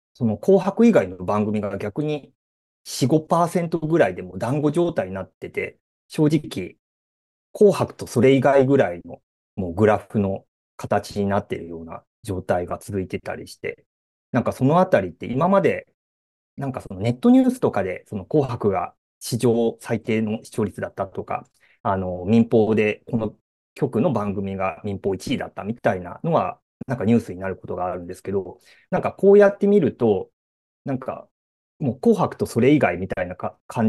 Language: Japanese